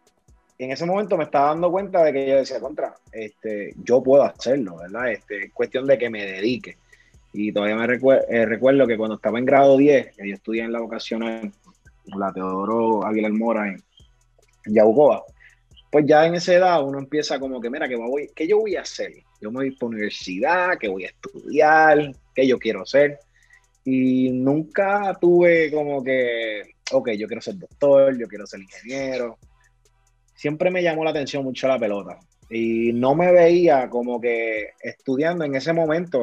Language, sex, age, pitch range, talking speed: Spanish, male, 30-49, 115-170 Hz, 185 wpm